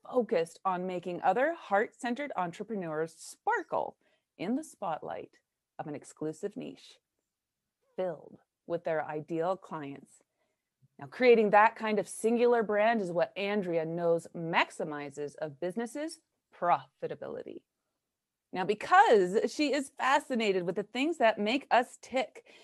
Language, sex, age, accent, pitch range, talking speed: English, female, 30-49, American, 175-255 Hz, 120 wpm